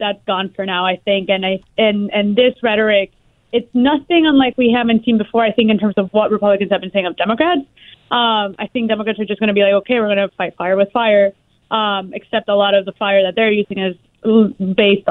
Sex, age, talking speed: female, 20-39, 240 wpm